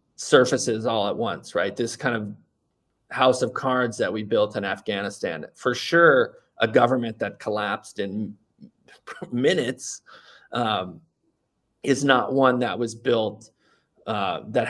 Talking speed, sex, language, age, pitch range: 135 wpm, male, English, 30-49, 105-125 Hz